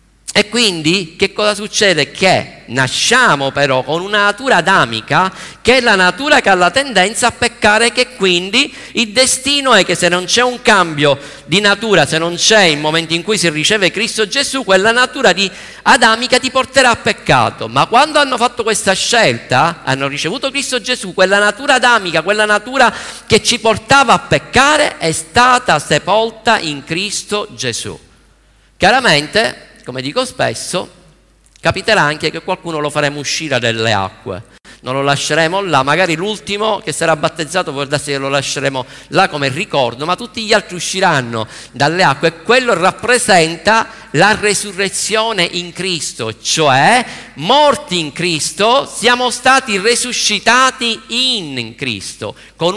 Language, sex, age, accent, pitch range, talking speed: Italian, male, 50-69, native, 155-230 Hz, 150 wpm